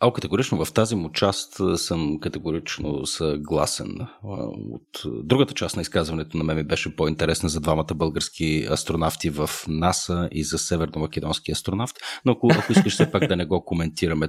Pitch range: 80-100 Hz